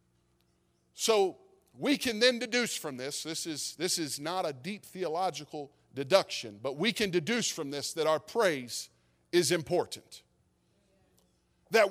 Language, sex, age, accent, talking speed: English, male, 40-59, American, 140 wpm